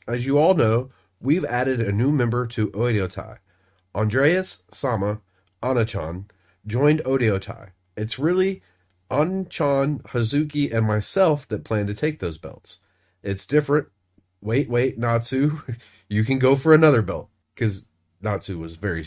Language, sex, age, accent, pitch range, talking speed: English, male, 30-49, American, 100-145 Hz, 135 wpm